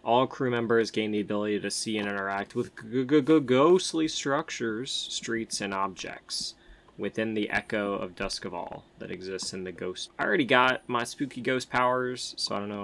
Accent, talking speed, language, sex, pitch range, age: American, 180 wpm, English, male, 100-120 Hz, 20-39